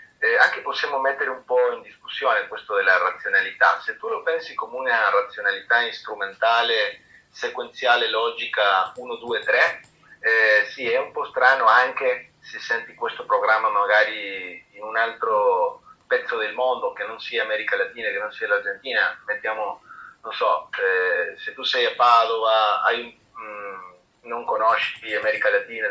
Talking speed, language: 145 wpm, Italian